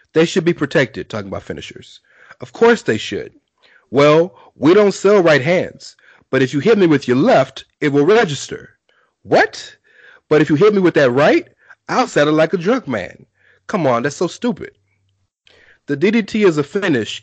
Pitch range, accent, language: 130-170 Hz, American, English